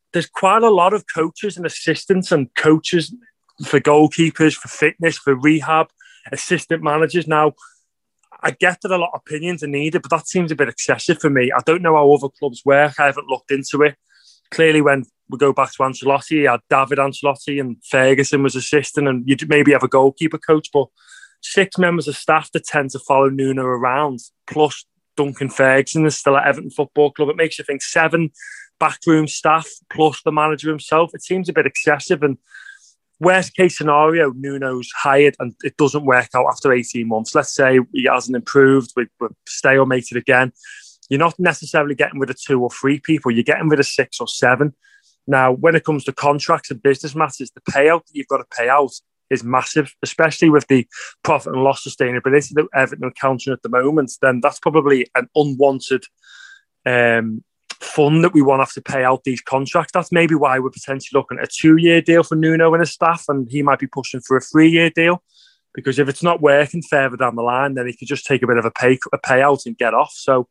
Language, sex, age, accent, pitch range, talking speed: English, male, 20-39, British, 135-160 Hz, 210 wpm